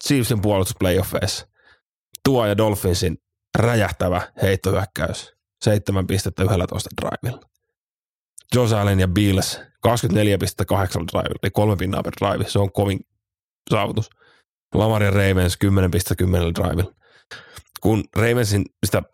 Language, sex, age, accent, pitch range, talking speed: Finnish, male, 30-49, native, 95-105 Hz, 115 wpm